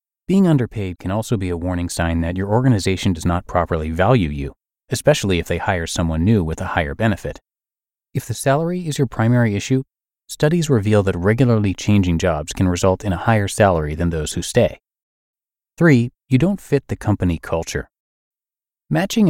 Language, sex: English, male